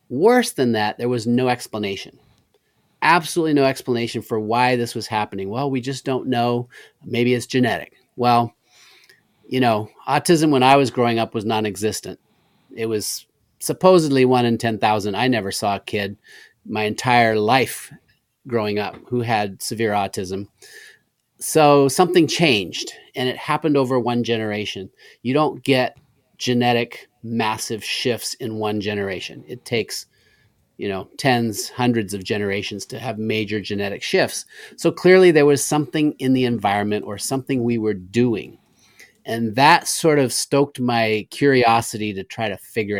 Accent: American